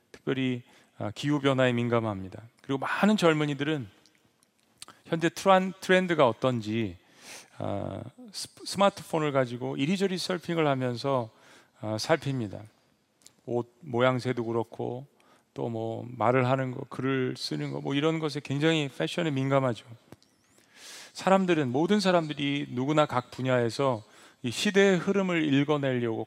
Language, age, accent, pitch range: Korean, 40-59, native, 115-150 Hz